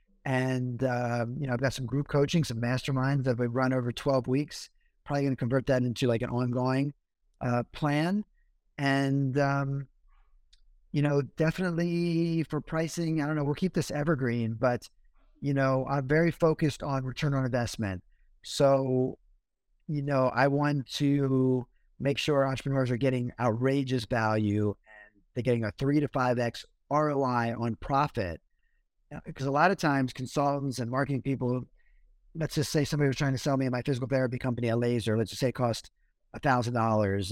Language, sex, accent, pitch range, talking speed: English, male, American, 120-145 Hz, 175 wpm